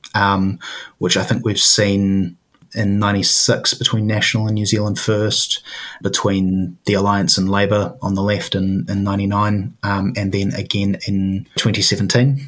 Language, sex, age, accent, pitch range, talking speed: English, male, 20-39, Australian, 95-110 Hz, 150 wpm